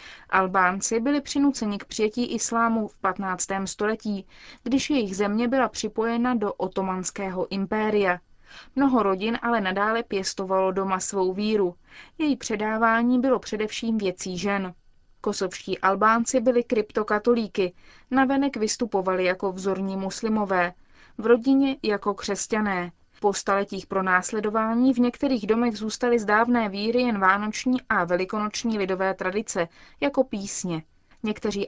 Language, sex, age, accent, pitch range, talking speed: Czech, female, 20-39, native, 195-235 Hz, 120 wpm